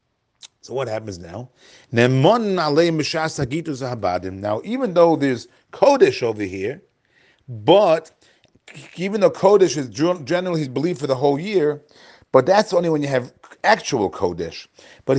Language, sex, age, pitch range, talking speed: English, male, 40-59, 135-180 Hz, 125 wpm